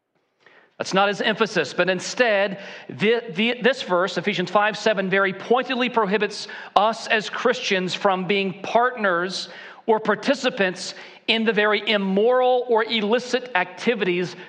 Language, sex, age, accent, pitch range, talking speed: English, male, 40-59, American, 175-225 Hz, 120 wpm